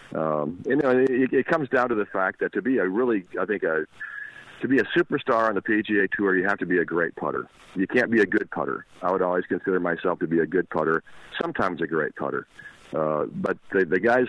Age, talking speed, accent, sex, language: 50-69, 230 wpm, American, male, English